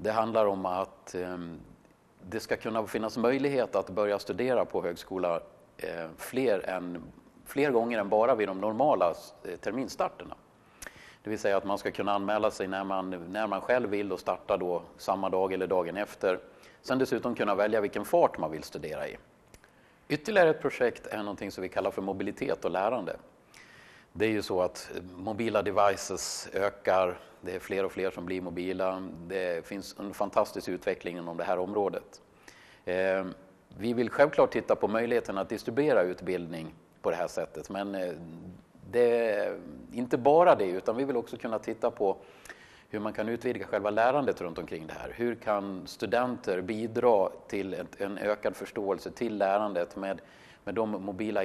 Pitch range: 95-110 Hz